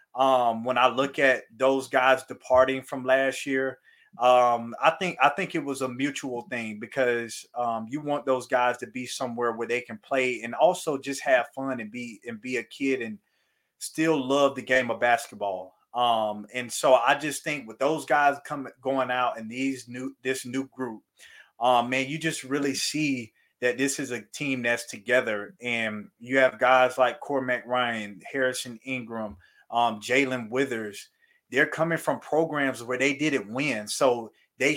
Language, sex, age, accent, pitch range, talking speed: English, male, 30-49, American, 120-140 Hz, 180 wpm